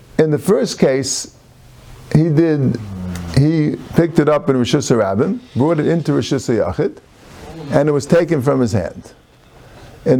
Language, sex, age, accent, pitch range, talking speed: English, male, 50-69, American, 130-170 Hz, 155 wpm